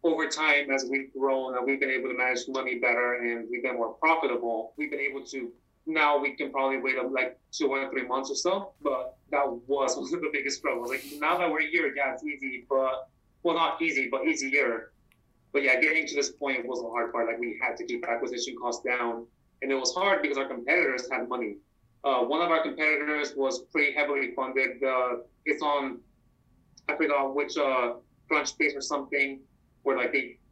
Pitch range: 125-145 Hz